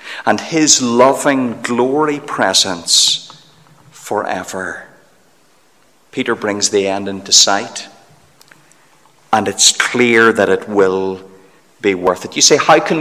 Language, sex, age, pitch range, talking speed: English, male, 50-69, 105-160 Hz, 115 wpm